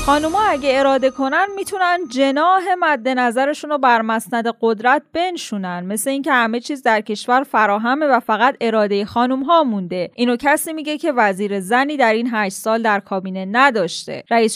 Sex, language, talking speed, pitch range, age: female, Persian, 160 wpm, 210-265 Hz, 10-29